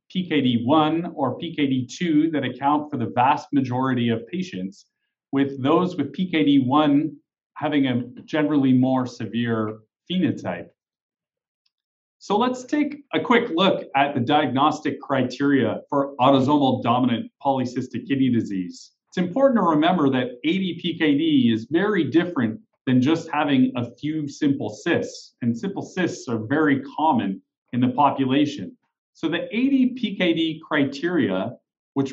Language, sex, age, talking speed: English, male, 40-59, 130 wpm